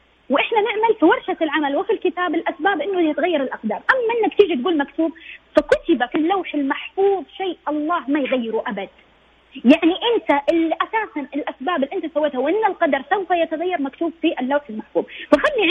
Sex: female